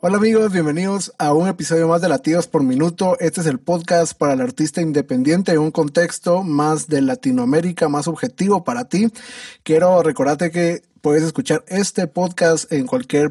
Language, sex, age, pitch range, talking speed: Spanish, male, 30-49, 145-240 Hz, 170 wpm